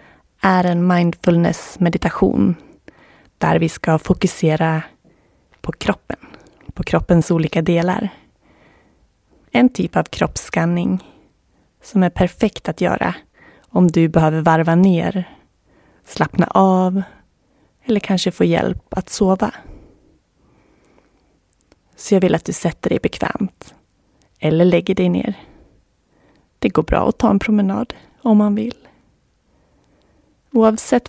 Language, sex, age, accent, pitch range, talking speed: Swedish, female, 20-39, native, 170-210 Hz, 110 wpm